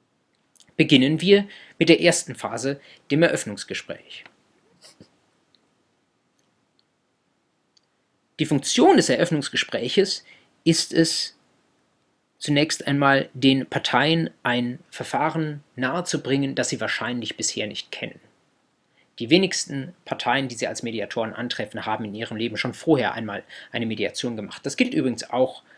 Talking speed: 115 wpm